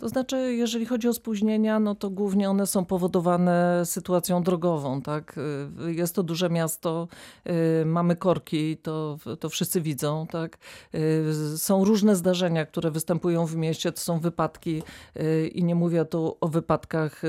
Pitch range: 160-195 Hz